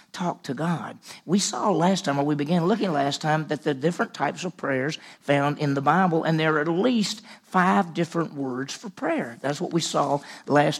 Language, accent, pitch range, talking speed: English, American, 145-185 Hz, 210 wpm